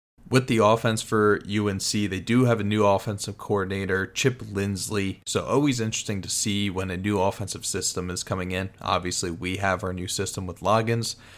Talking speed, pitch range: 185 wpm, 95-110 Hz